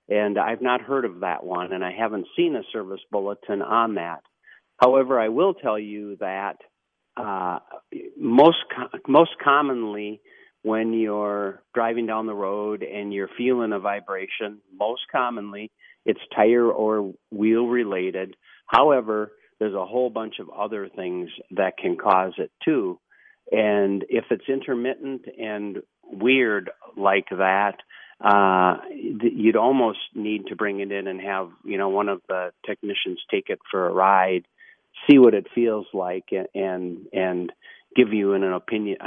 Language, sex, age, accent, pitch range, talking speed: English, male, 50-69, American, 95-115 Hz, 150 wpm